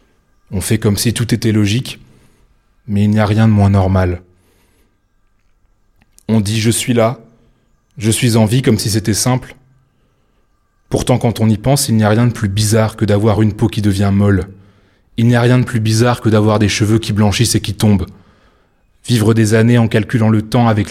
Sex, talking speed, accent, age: male, 205 wpm, French, 20-39